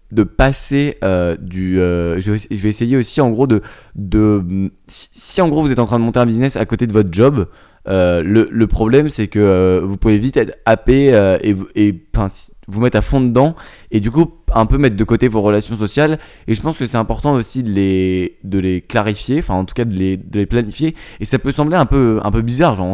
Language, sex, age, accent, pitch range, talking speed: French, male, 20-39, French, 100-130 Hz, 245 wpm